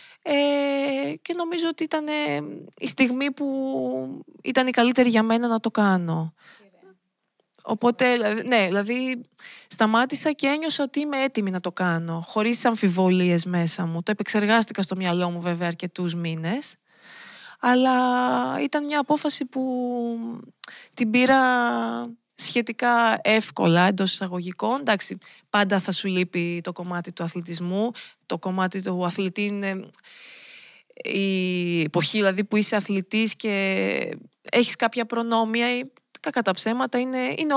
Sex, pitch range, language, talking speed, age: female, 190-260 Hz, Greek, 125 wpm, 20-39